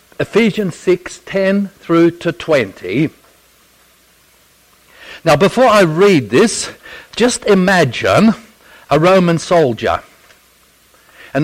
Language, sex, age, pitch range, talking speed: English, male, 60-79, 145-195 Hz, 90 wpm